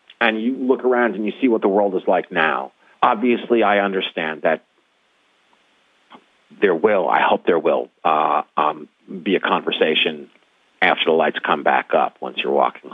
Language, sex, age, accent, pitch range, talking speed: English, male, 50-69, American, 100-120 Hz, 170 wpm